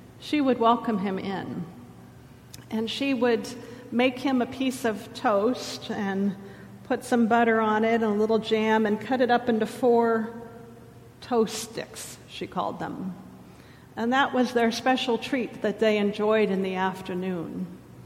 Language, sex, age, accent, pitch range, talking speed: English, female, 50-69, American, 195-230 Hz, 155 wpm